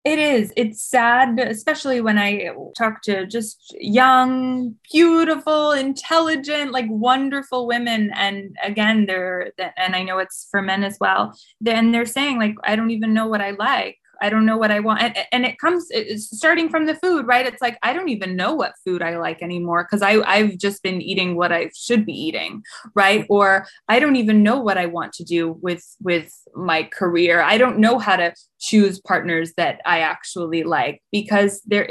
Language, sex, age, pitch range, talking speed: English, female, 20-39, 185-230 Hz, 195 wpm